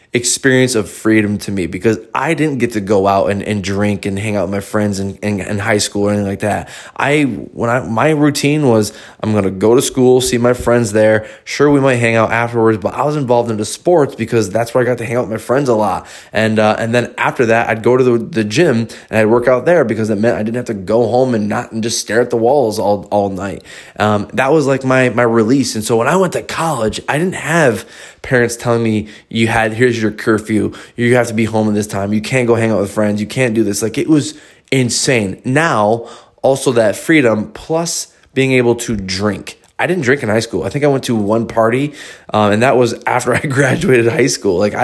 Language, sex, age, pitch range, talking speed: English, male, 20-39, 105-125 Hz, 250 wpm